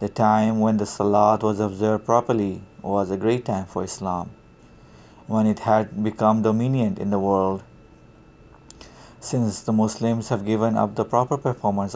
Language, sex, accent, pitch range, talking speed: English, male, Indian, 105-115 Hz, 155 wpm